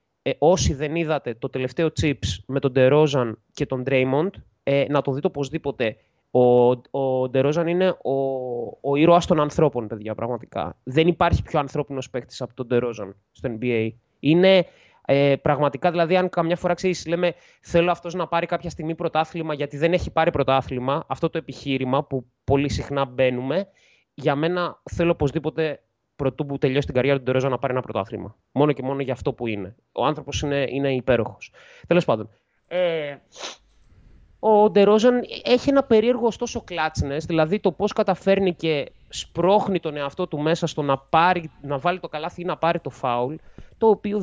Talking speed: 170 wpm